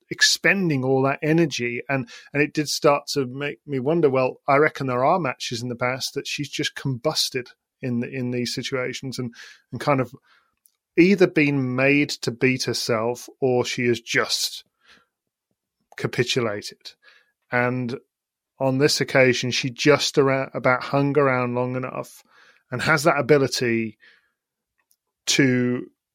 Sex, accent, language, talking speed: male, British, English, 145 wpm